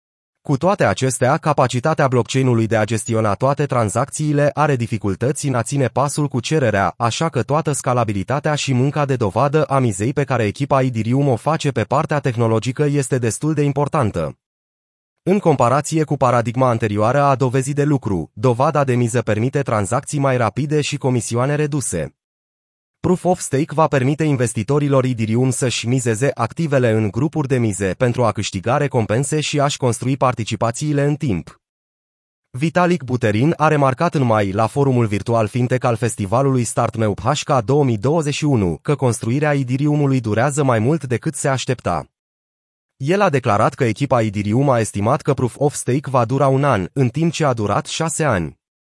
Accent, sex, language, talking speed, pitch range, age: native, male, Romanian, 160 wpm, 115-145 Hz, 30-49